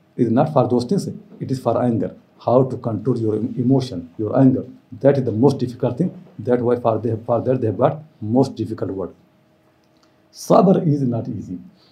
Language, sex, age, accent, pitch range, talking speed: English, male, 60-79, Indian, 115-140 Hz, 190 wpm